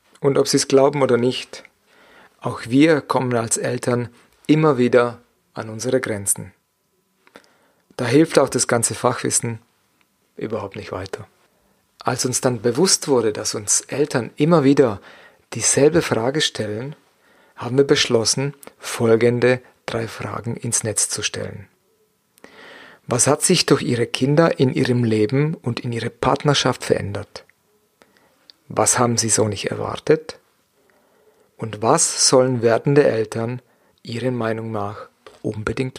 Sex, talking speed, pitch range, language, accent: male, 130 wpm, 115-140 Hz, German, German